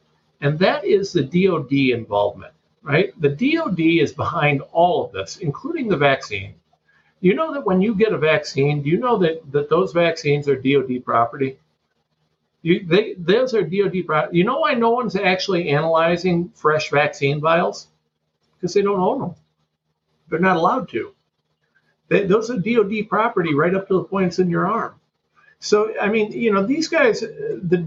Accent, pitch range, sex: American, 140-200 Hz, male